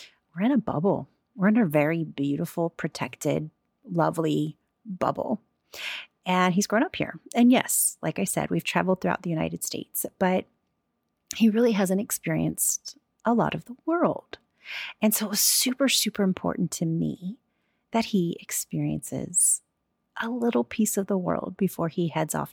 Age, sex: 30-49, female